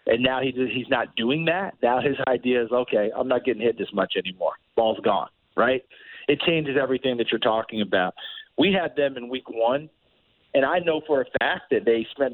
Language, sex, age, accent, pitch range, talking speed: English, male, 40-59, American, 120-145 Hz, 210 wpm